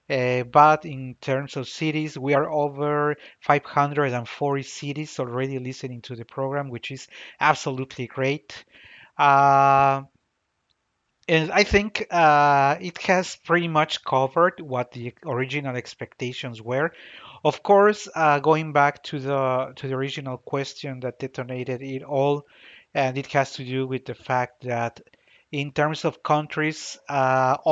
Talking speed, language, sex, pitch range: 135 wpm, English, male, 130-150 Hz